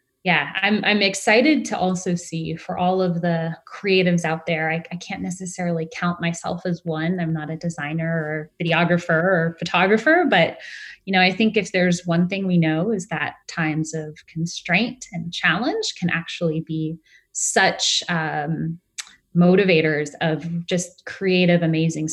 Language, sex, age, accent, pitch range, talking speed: English, female, 20-39, American, 155-180 Hz, 155 wpm